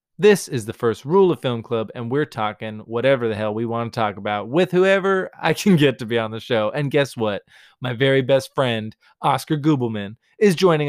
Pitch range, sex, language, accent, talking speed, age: 110-140 Hz, male, English, American, 220 wpm, 20-39